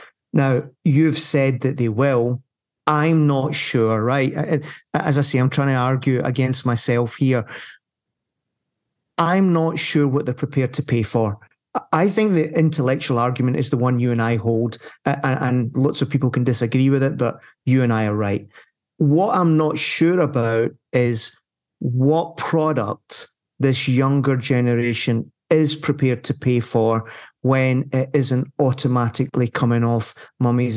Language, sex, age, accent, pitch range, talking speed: English, male, 30-49, British, 120-150 Hz, 150 wpm